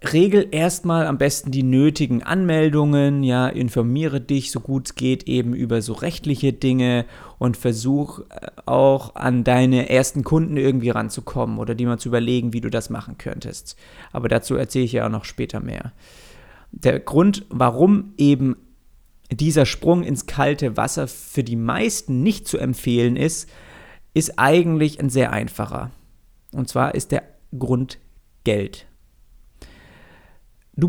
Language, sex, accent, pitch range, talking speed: German, male, German, 125-155 Hz, 145 wpm